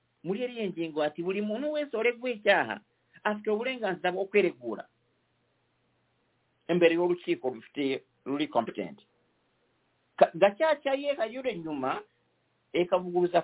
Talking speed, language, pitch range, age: 90 wpm, English, 120-180 Hz, 50-69